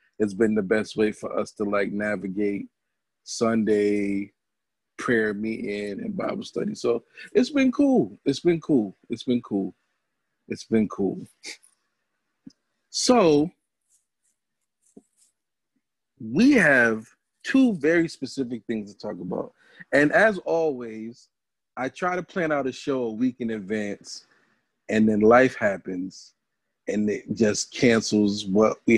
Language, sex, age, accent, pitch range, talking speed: English, male, 40-59, American, 105-140 Hz, 130 wpm